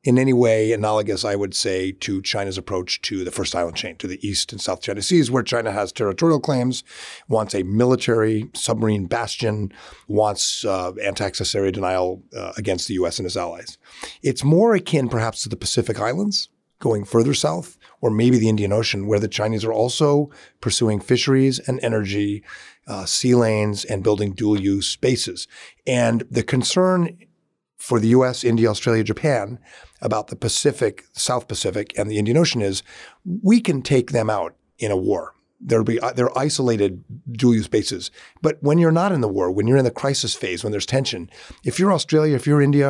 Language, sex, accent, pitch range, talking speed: English, male, American, 105-135 Hz, 185 wpm